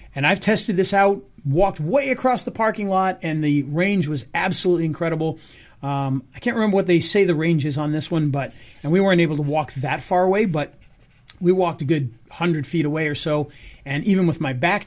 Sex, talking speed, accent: male, 220 wpm, American